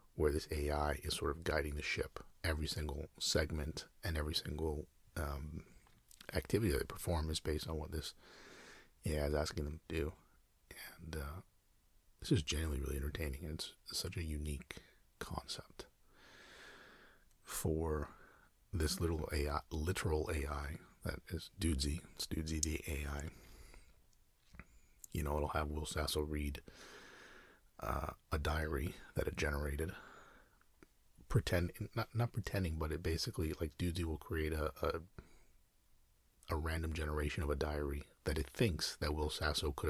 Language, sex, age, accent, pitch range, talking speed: English, male, 40-59, American, 75-85 Hz, 145 wpm